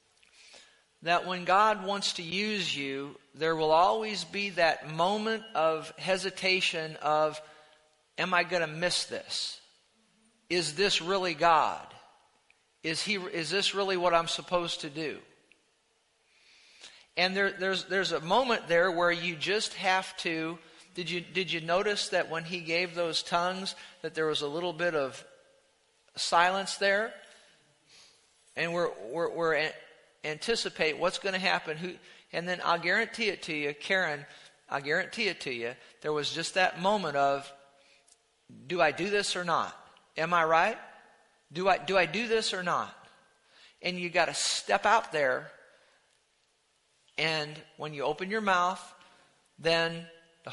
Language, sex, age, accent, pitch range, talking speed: English, male, 50-69, American, 160-190 Hz, 155 wpm